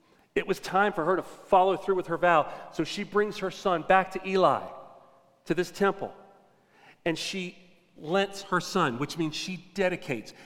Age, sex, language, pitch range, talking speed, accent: 40-59, male, English, 170-210 Hz, 180 wpm, American